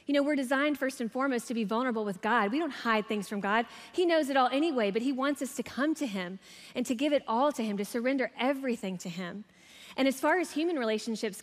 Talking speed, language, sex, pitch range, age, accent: 255 wpm, English, female, 205-260 Hz, 20-39, American